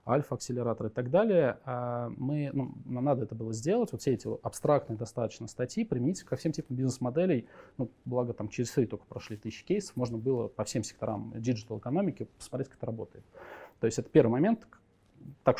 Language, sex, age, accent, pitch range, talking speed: Russian, male, 20-39, native, 115-140 Hz, 180 wpm